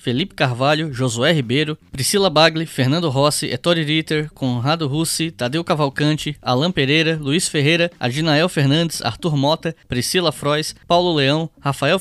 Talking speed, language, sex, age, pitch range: 135 wpm, Portuguese, male, 10-29, 130-175 Hz